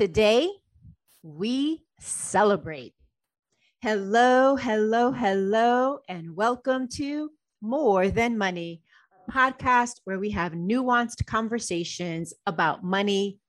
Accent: American